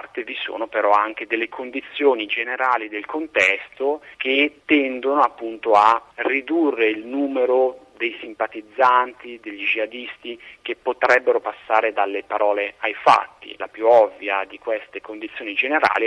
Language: Italian